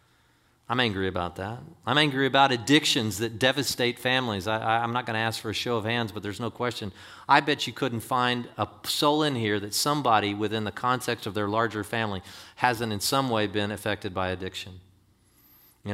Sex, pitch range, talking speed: male, 100-125 Hz, 195 wpm